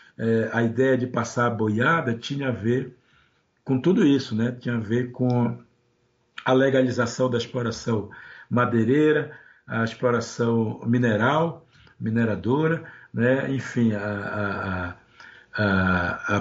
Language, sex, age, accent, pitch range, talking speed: Portuguese, male, 60-79, Brazilian, 115-140 Hz, 110 wpm